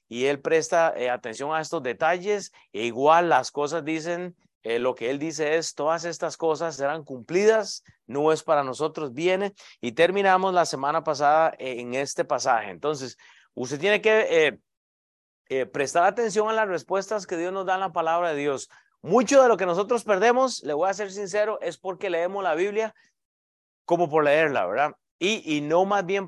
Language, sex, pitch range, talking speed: Spanish, male, 140-185 Hz, 190 wpm